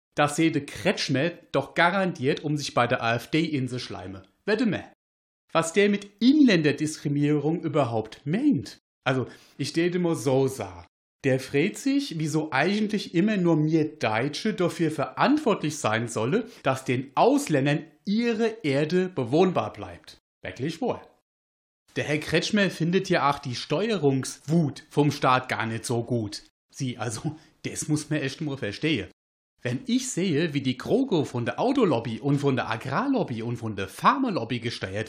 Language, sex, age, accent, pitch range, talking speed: German, male, 40-59, German, 120-170 Hz, 150 wpm